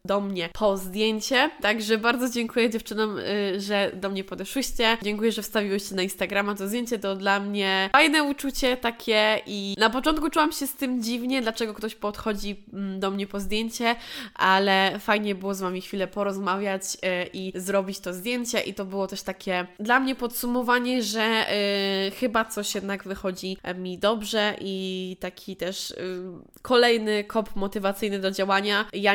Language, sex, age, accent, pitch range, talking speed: Polish, female, 20-39, native, 190-220 Hz, 155 wpm